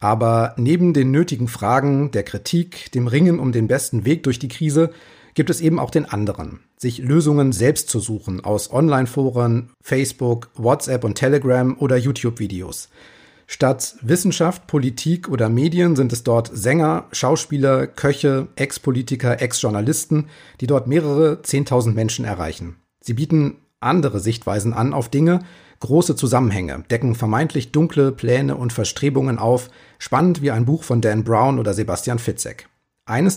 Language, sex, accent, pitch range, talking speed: German, male, German, 120-155 Hz, 145 wpm